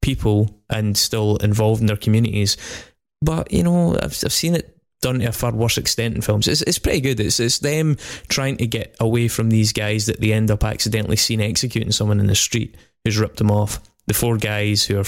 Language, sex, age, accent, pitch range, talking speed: English, male, 20-39, British, 105-115 Hz, 225 wpm